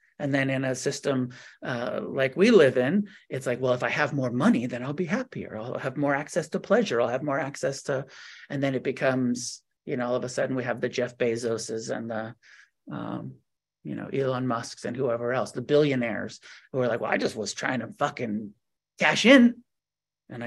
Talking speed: 215 wpm